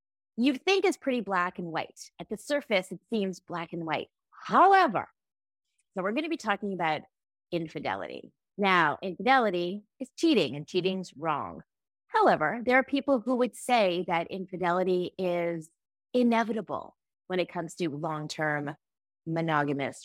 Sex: female